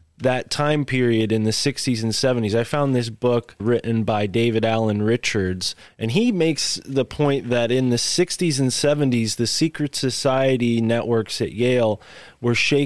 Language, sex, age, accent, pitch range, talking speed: English, male, 20-39, American, 105-125 Hz, 165 wpm